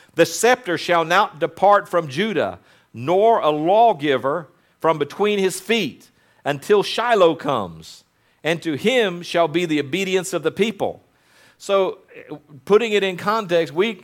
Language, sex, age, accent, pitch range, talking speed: English, male, 50-69, American, 150-200 Hz, 140 wpm